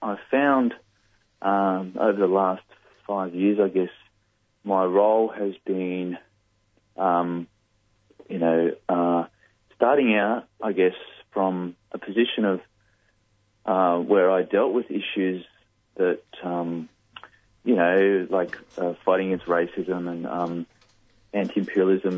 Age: 30-49